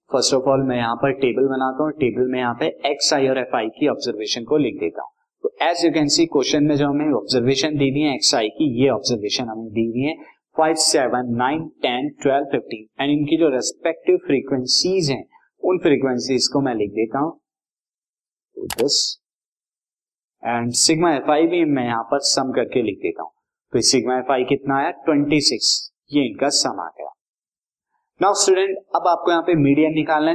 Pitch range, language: 125-155 Hz, Hindi